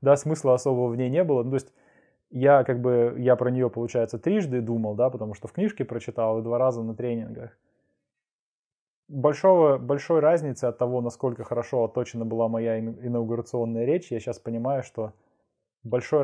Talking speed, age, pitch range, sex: 170 wpm, 20-39, 115-130 Hz, male